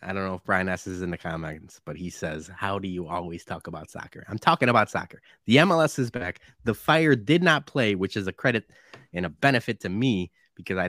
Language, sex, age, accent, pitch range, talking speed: English, male, 20-39, American, 100-130 Hz, 240 wpm